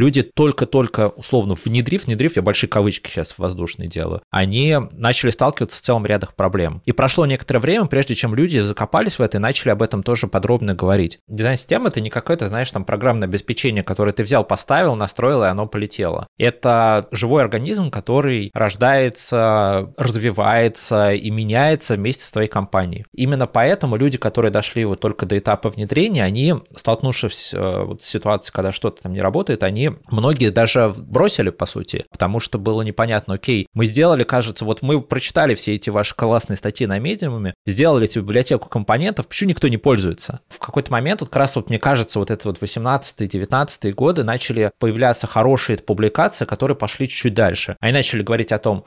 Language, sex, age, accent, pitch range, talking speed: Russian, male, 20-39, native, 105-130 Hz, 180 wpm